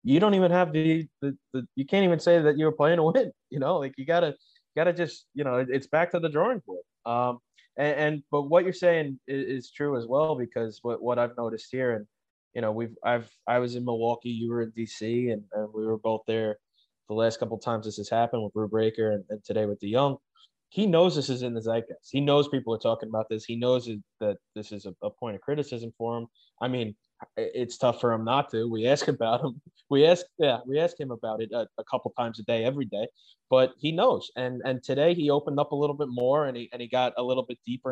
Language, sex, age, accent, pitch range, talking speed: English, male, 20-39, American, 115-145 Hz, 260 wpm